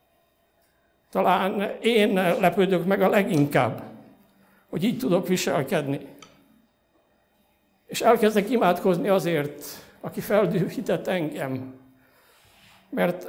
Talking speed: 80 wpm